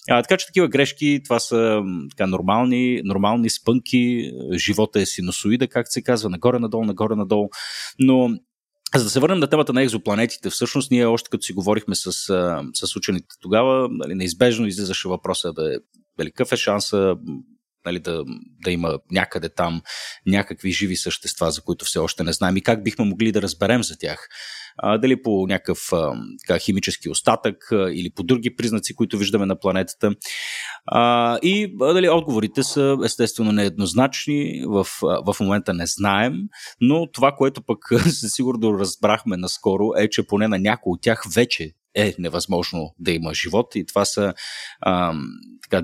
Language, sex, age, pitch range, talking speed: Bulgarian, male, 30-49, 95-125 Hz, 165 wpm